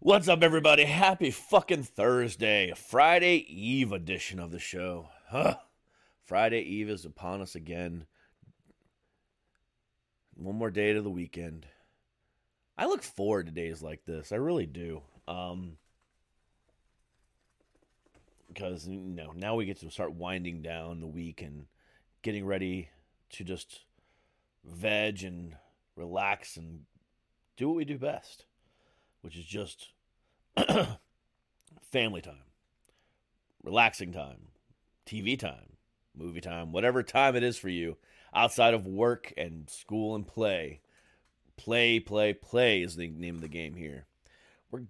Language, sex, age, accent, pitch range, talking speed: English, male, 30-49, American, 85-115 Hz, 125 wpm